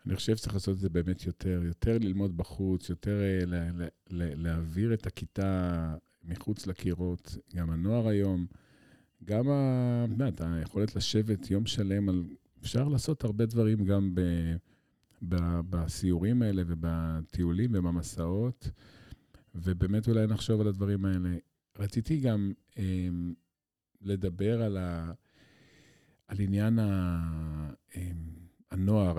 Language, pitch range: Hebrew, 90-115 Hz